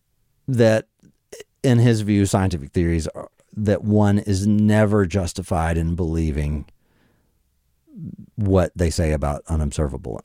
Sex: male